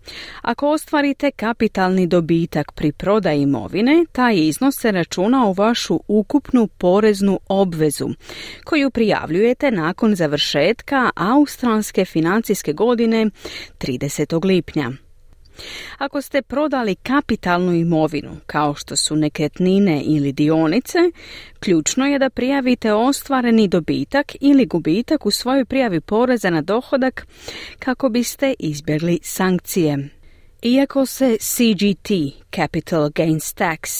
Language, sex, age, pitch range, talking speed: Croatian, female, 40-59, 160-245 Hz, 105 wpm